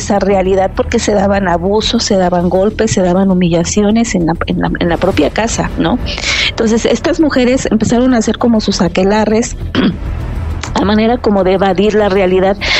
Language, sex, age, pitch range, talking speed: Spanish, female, 40-59, 185-215 Hz, 175 wpm